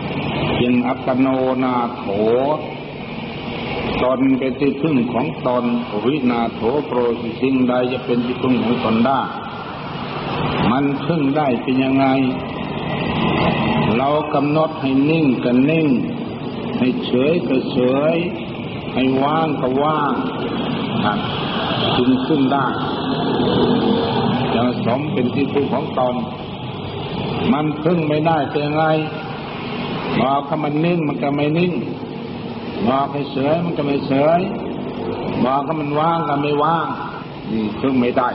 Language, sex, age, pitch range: Thai, male, 60-79, 120-145 Hz